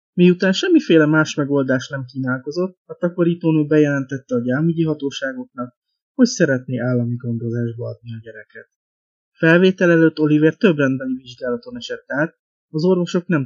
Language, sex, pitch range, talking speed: Hungarian, male, 125-165 Hz, 135 wpm